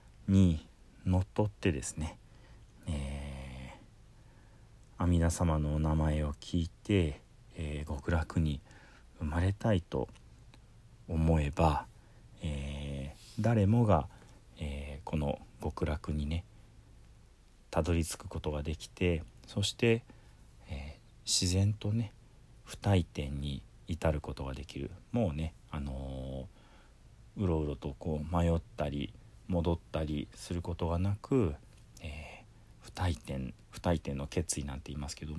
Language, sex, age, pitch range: Japanese, male, 40-59, 75-110 Hz